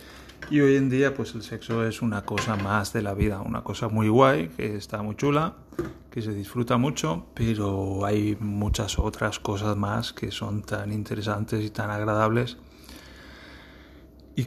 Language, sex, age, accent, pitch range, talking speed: Spanish, male, 30-49, Spanish, 105-120 Hz, 165 wpm